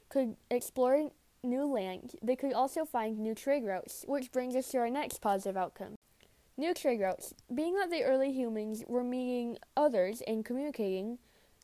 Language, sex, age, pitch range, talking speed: English, female, 10-29, 215-265 Hz, 165 wpm